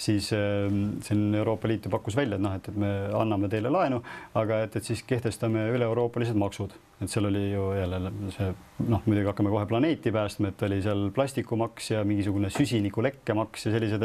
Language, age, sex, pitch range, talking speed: English, 30-49, male, 100-115 Hz, 190 wpm